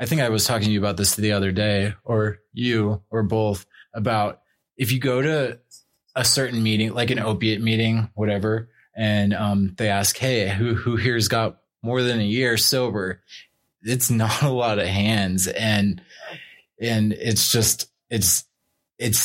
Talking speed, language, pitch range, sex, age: 170 wpm, English, 100-115 Hz, male, 20-39